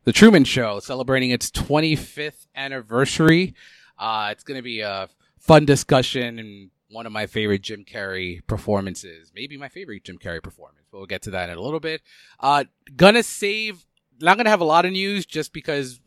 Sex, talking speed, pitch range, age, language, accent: male, 185 wpm, 115-155 Hz, 30-49, English, American